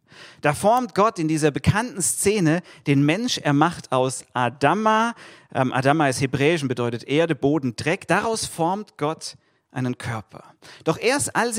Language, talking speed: German, 150 wpm